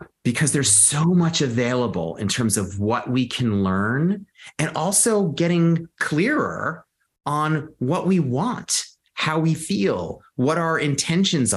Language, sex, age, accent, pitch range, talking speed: English, male, 30-49, American, 110-150 Hz, 135 wpm